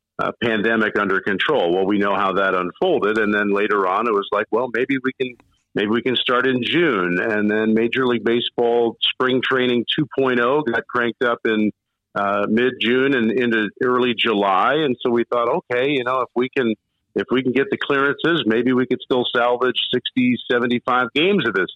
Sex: male